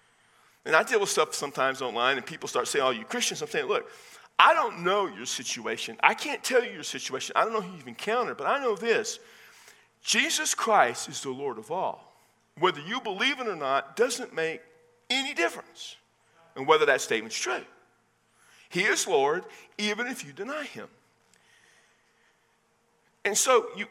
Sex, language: male, English